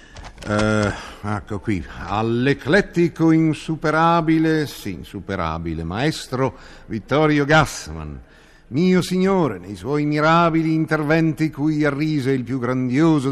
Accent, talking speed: native, 90 wpm